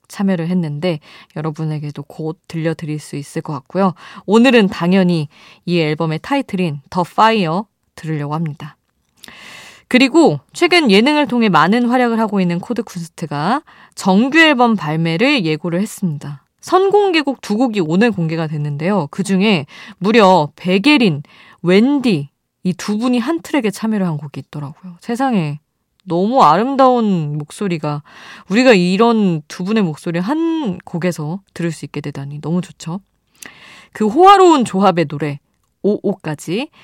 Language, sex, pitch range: Korean, female, 160-230 Hz